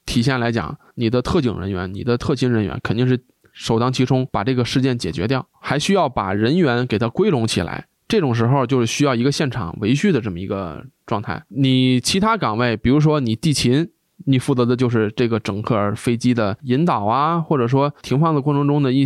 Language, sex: Chinese, male